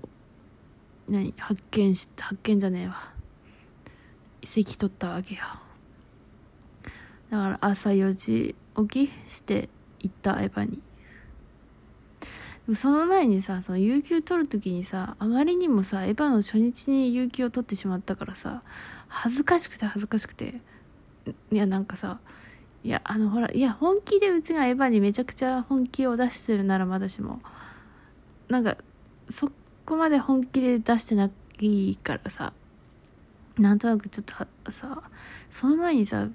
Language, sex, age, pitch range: Japanese, female, 20-39, 190-245 Hz